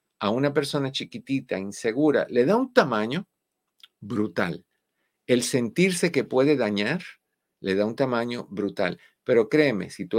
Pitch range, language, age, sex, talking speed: 100-150 Hz, Spanish, 50-69, male, 140 wpm